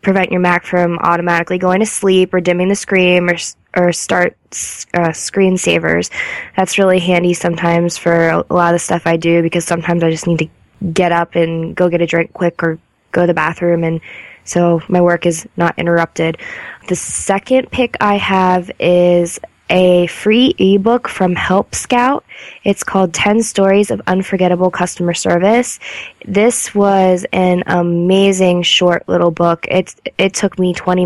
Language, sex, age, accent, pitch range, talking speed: English, female, 20-39, American, 170-190 Hz, 170 wpm